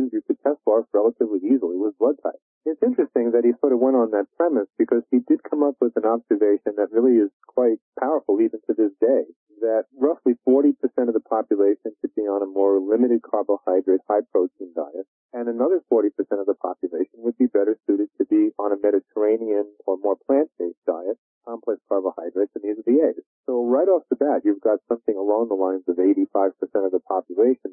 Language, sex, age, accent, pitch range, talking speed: English, male, 40-59, American, 100-140 Hz, 200 wpm